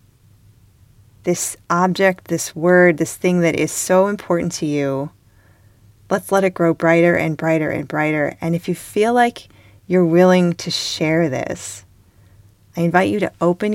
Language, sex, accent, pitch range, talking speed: English, female, American, 140-170 Hz, 155 wpm